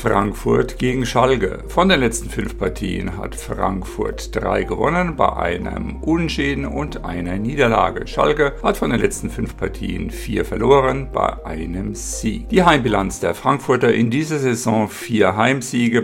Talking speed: 145 wpm